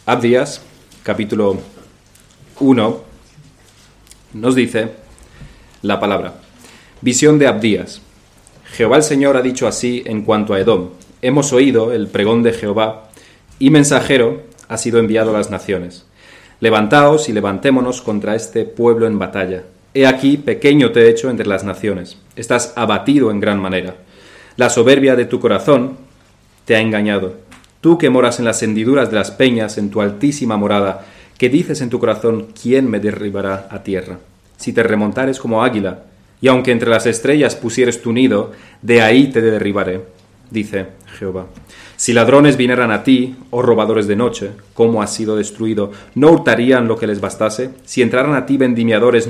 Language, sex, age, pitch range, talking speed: Spanish, male, 30-49, 105-125 Hz, 160 wpm